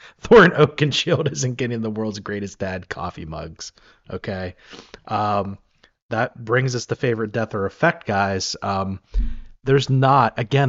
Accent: American